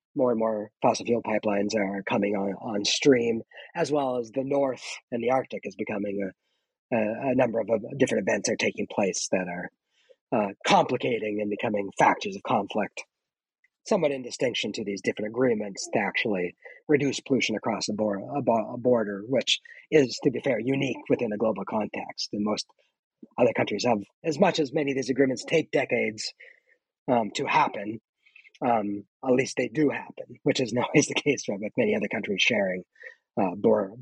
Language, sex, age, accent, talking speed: English, male, 40-59, American, 185 wpm